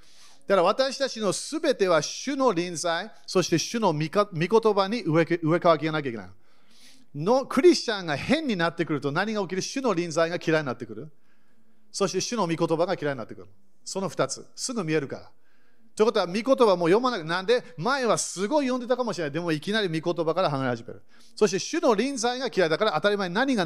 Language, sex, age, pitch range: Japanese, male, 40-59, 150-215 Hz